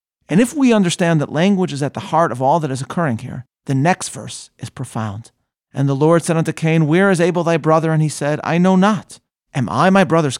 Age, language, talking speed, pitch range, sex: 40-59, English, 240 wpm, 130-185 Hz, male